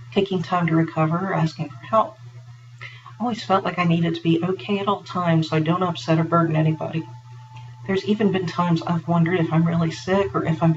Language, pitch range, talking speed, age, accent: English, 145-180 Hz, 225 wpm, 50-69, American